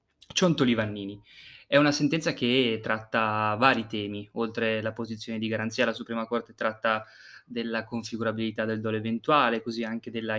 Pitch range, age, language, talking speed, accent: 110-135 Hz, 20-39, Italian, 150 wpm, native